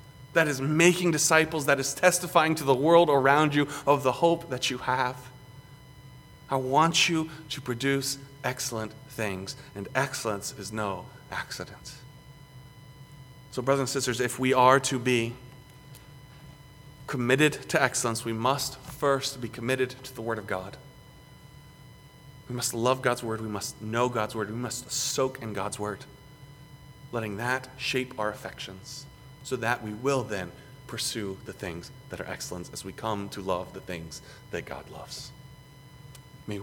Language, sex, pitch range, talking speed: English, male, 115-140 Hz, 155 wpm